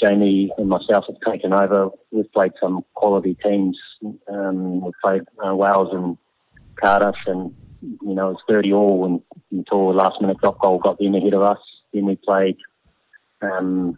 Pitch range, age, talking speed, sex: 95-100 Hz, 30-49, 165 wpm, male